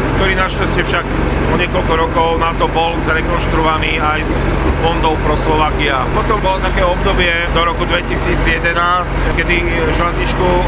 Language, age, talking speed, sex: Slovak, 40-59, 135 wpm, male